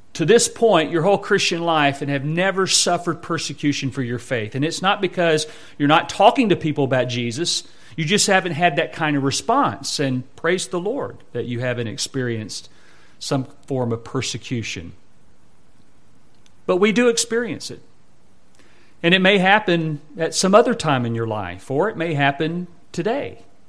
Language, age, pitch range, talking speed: English, 40-59, 135-190 Hz, 170 wpm